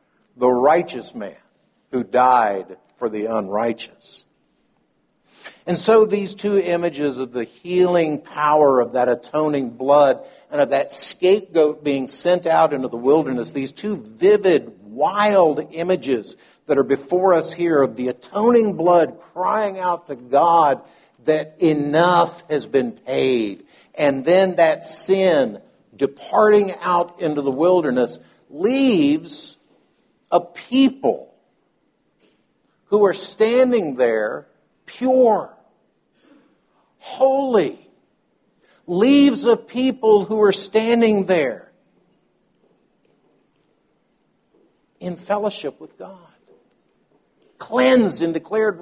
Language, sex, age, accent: English, male, 50-69, American